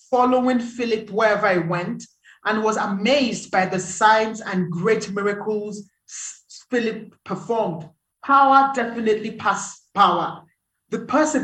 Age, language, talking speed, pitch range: 30-49, English, 115 wpm, 190-250 Hz